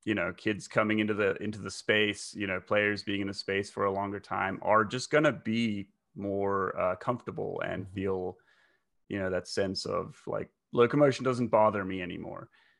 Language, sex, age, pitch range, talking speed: English, male, 30-49, 95-115 Hz, 190 wpm